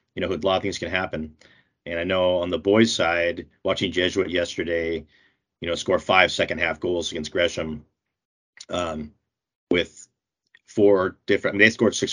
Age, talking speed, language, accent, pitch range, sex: 40-59, 180 wpm, English, American, 85-100 Hz, male